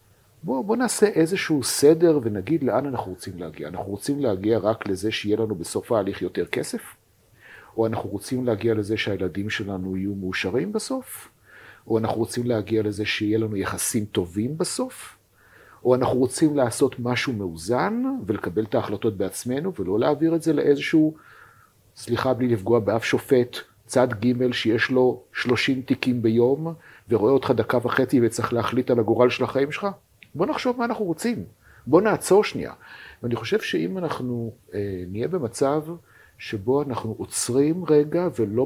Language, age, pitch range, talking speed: Hebrew, 50-69, 105-140 Hz, 155 wpm